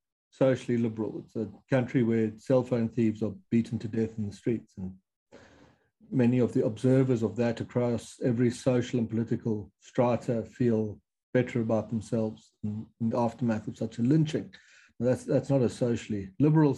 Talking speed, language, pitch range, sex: 170 wpm, English, 115-140 Hz, male